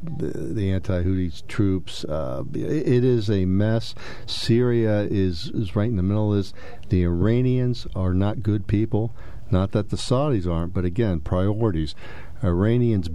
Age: 50-69